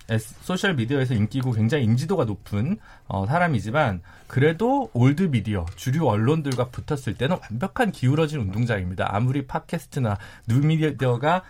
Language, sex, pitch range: Korean, male, 120-175 Hz